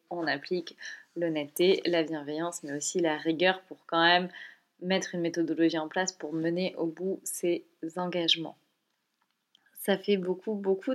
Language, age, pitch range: French, 20-39, 165-195 Hz